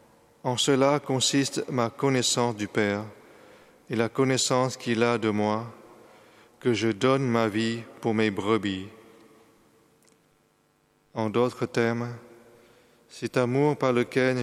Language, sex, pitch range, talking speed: French, male, 110-120 Hz, 120 wpm